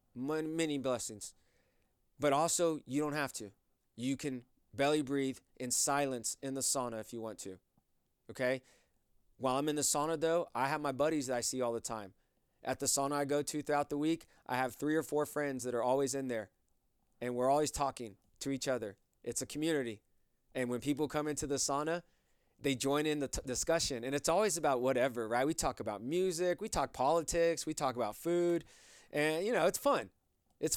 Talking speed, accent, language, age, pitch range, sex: 200 wpm, American, English, 20-39, 125-155 Hz, male